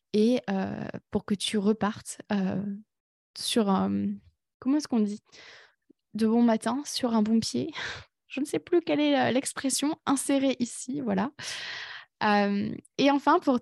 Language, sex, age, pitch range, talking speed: French, female, 20-39, 200-255 Hz, 150 wpm